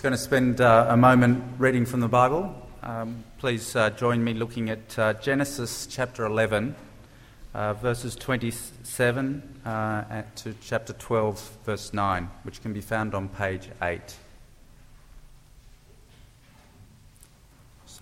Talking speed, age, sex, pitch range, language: 120 wpm, 30-49, male, 105-125 Hz, English